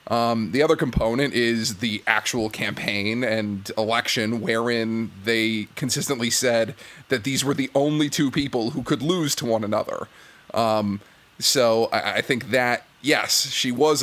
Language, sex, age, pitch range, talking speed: English, male, 30-49, 115-150 Hz, 155 wpm